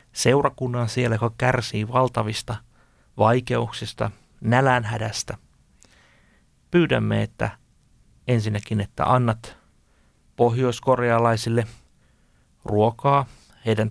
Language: Finnish